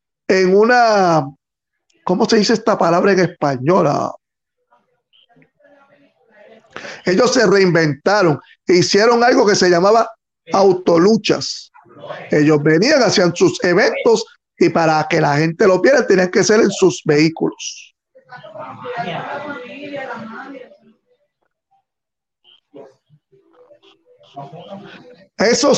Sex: male